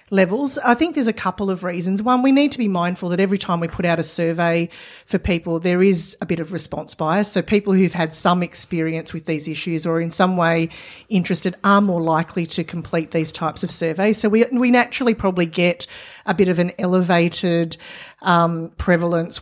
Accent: Australian